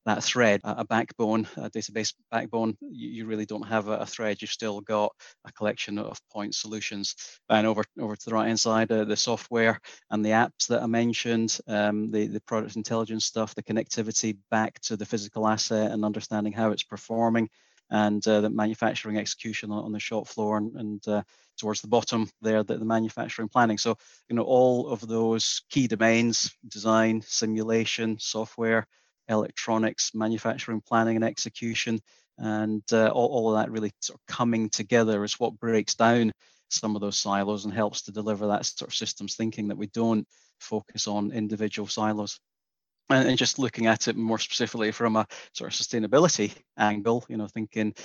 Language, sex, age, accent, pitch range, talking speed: English, male, 30-49, British, 105-115 Hz, 180 wpm